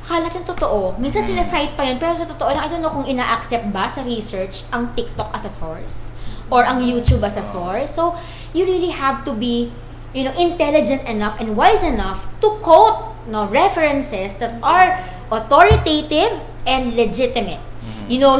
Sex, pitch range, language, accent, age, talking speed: female, 210-280 Hz, Filipino, native, 20-39, 175 wpm